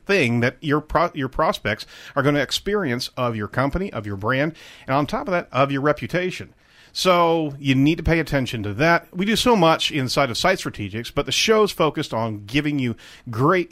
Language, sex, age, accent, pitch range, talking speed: English, male, 40-59, American, 120-160 Hz, 210 wpm